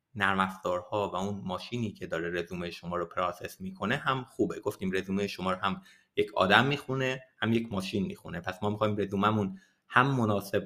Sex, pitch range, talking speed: male, 95-125 Hz, 175 wpm